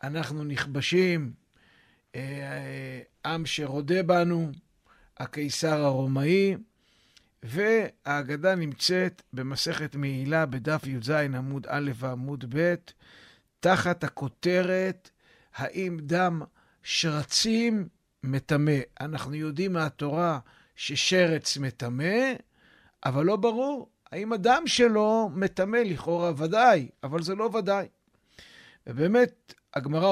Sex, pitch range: male, 140-195 Hz